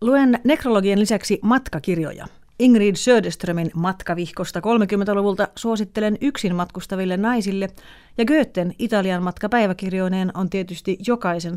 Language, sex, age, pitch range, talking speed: Finnish, female, 30-49, 175-215 Hz, 100 wpm